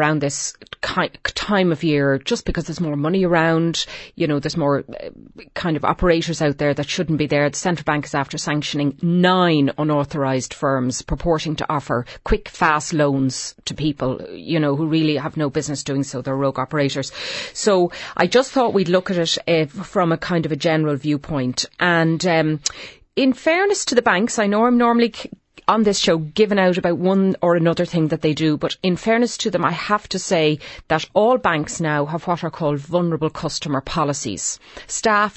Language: English